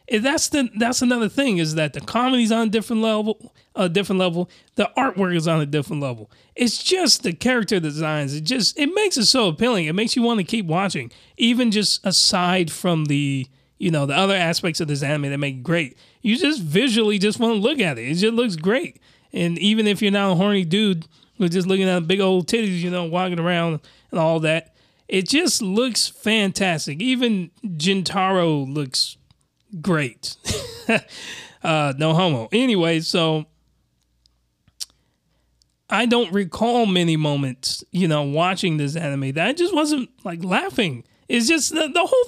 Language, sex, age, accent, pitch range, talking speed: English, male, 20-39, American, 150-225 Hz, 185 wpm